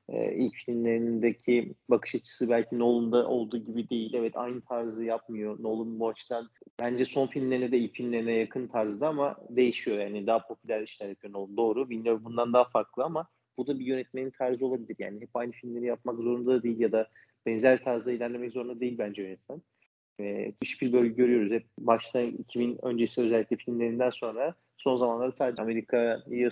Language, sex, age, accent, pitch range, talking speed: Turkish, male, 40-59, native, 115-125 Hz, 175 wpm